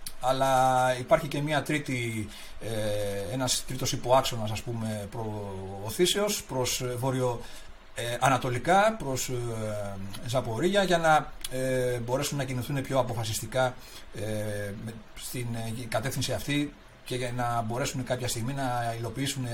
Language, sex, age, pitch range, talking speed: Greek, male, 40-59, 110-135 Hz, 90 wpm